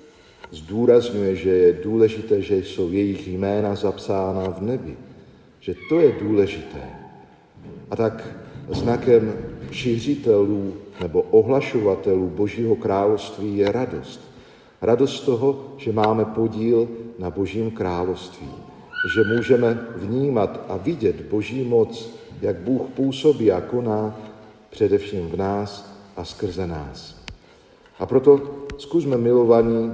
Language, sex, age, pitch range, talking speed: Slovak, male, 50-69, 95-120 Hz, 110 wpm